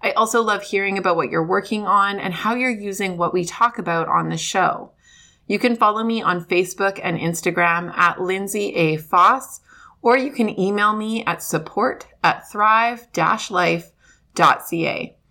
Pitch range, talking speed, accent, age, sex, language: 175-225 Hz, 160 wpm, American, 20-39, female, English